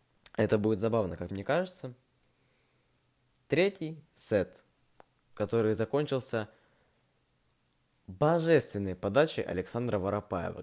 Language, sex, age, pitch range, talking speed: Russian, male, 20-39, 95-130 Hz, 80 wpm